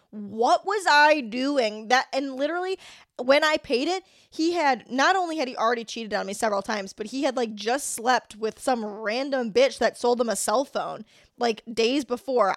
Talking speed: 200 wpm